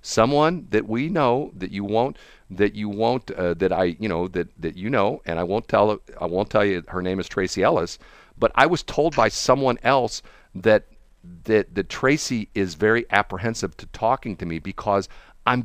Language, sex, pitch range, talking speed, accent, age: English, male, 90-135 Hz, 200 wpm, American, 50-69